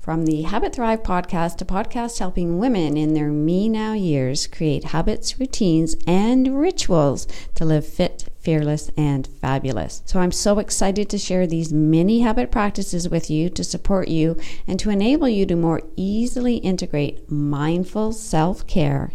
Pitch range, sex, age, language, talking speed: 160-225 Hz, female, 50-69, English, 155 wpm